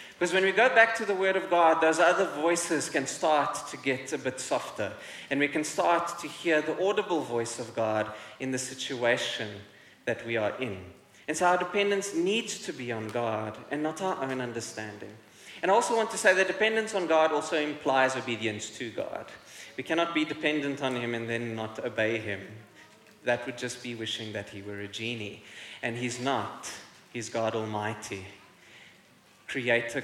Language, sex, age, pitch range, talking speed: English, male, 20-39, 115-160 Hz, 190 wpm